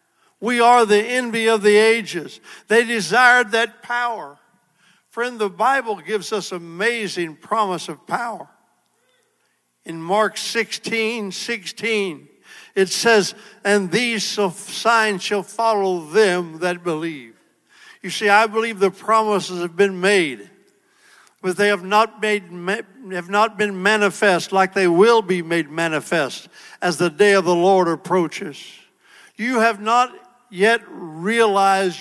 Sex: male